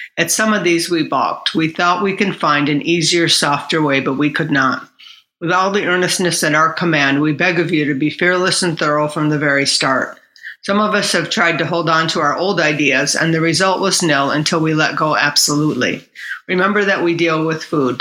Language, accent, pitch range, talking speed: English, American, 150-180 Hz, 225 wpm